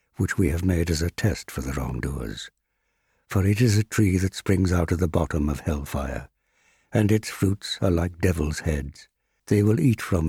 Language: English